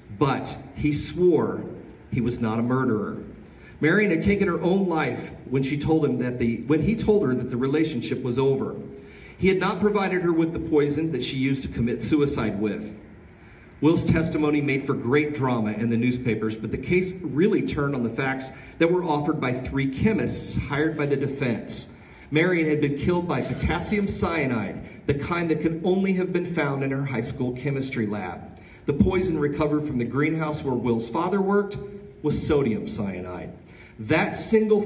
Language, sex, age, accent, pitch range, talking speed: English, male, 40-59, American, 115-160 Hz, 185 wpm